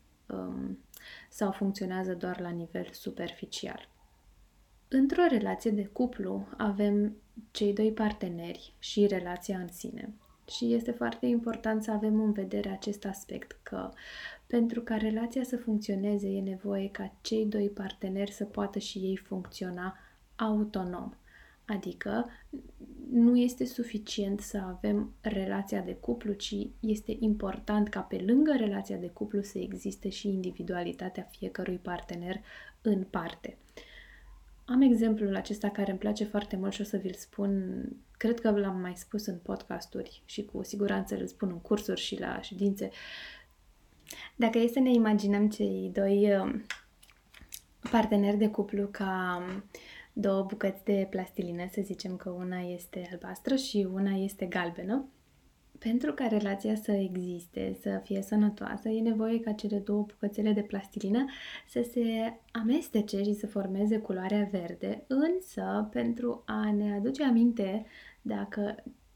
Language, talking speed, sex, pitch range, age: Romanian, 135 wpm, female, 190-220 Hz, 20-39